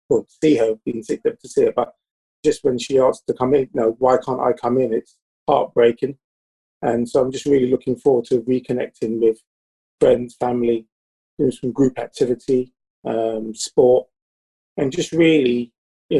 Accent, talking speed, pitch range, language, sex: British, 180 wpm, 120-135 Hz, English, male